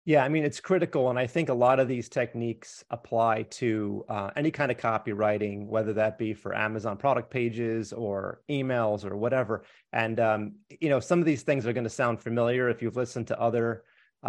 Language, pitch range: English, 110-125 Hz